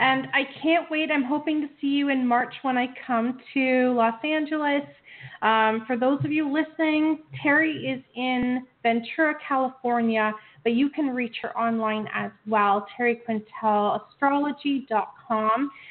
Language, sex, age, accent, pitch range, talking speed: English, female, 30-49, American, 235-310 Hz, 140 wpm